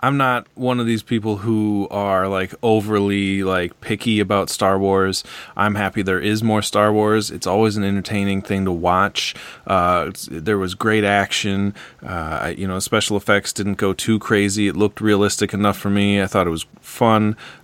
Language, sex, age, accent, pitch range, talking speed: English, male, 30-49, American, 95-110 Hz, 185 wpm